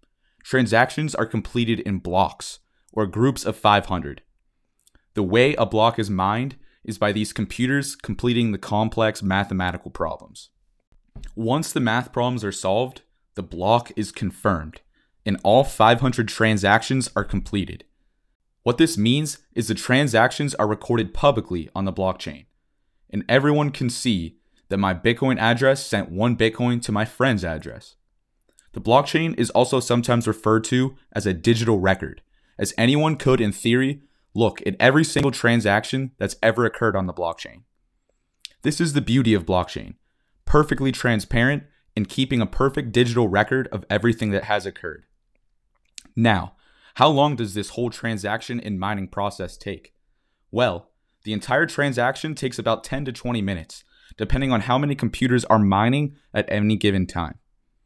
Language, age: English, 20-39